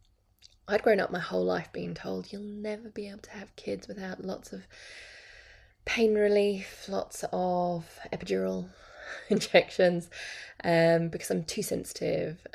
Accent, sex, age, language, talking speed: British, female, 20-39, English, 140 wpm